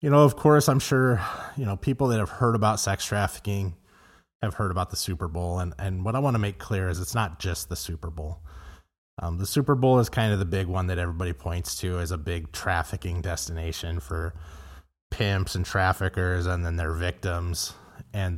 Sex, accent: male, American